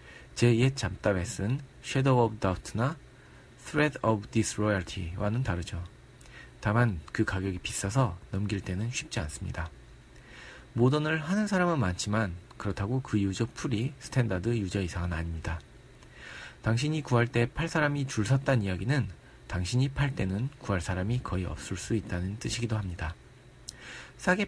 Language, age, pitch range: Korean, 40-59, 100-130 Hz